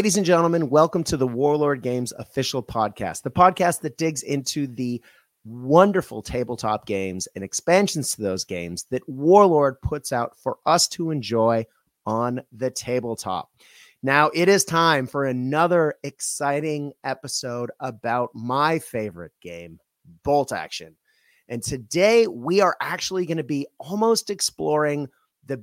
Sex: male